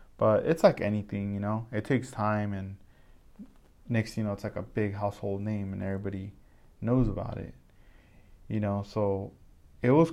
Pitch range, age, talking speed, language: 100-120 Hz, 20-39, 170 wpm, English